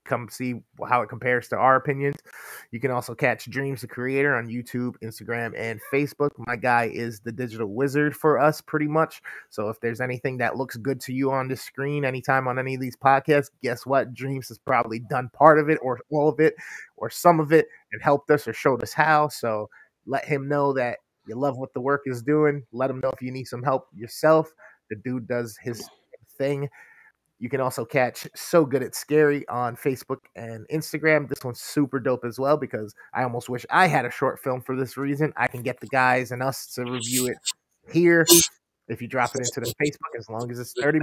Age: 30-49